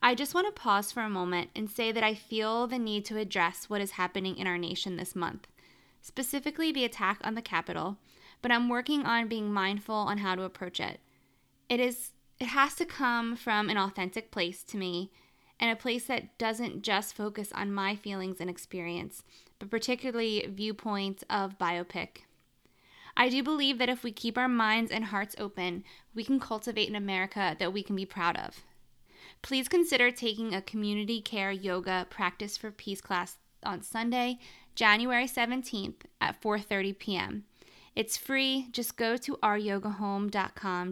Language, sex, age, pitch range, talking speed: English, female, 20-39, 195-235 Hz, 175 wpm